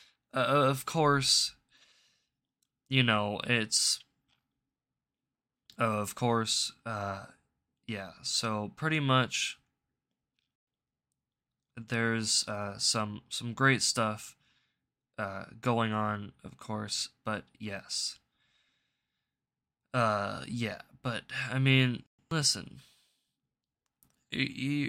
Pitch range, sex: 115-135 Hz, male